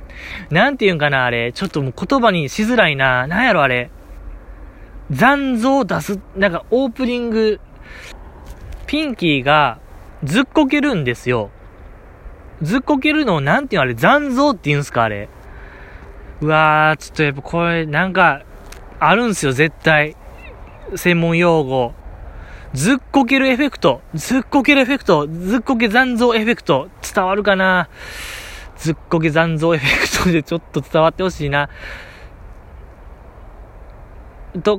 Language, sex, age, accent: Japanese, male, 20-39, native